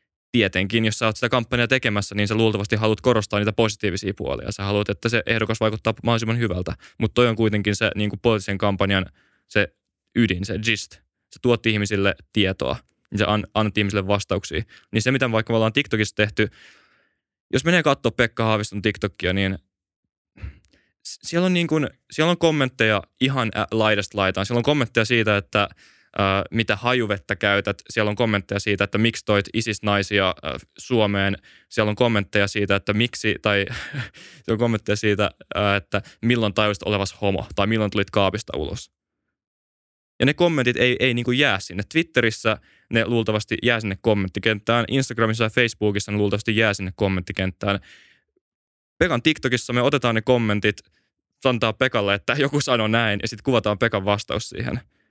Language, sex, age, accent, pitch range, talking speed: Finnish, male, 20-39, native, 100-120 Hz, 165 wpm